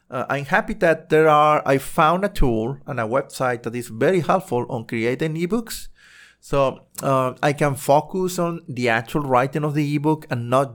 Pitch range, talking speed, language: 125-155 Hz, 190 wpm, English